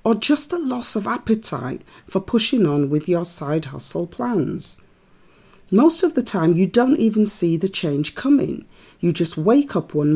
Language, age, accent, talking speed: English, 40-59, British, 175 wpm